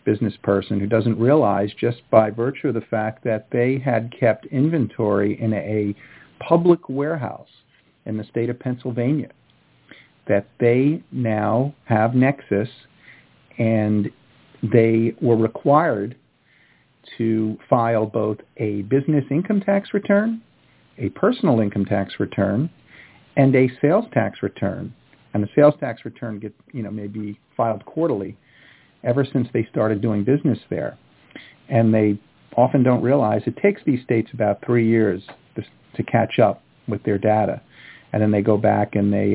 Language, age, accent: English, 50-69, American